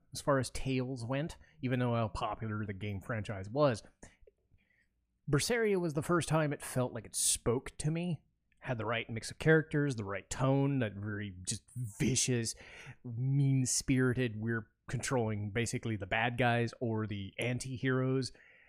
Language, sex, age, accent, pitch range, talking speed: English, male, 30-49, American, 110-145 Hz, 155 wpm